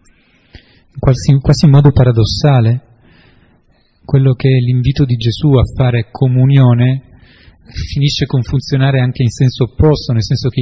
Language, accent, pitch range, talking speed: Italian, native, 115-145 Hz, 130 wpm